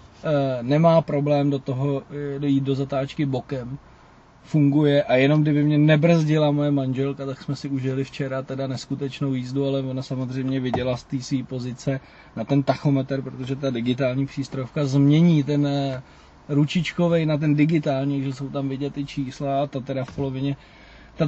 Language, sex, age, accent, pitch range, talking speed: Czech, male, 20-39, native, 135-155 Hz, 155 wpm